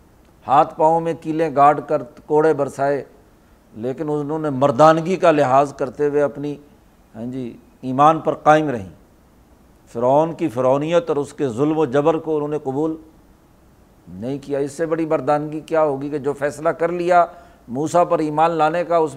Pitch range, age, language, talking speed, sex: 140-165 Hz, 60-79, Urdu, 170 wpm, male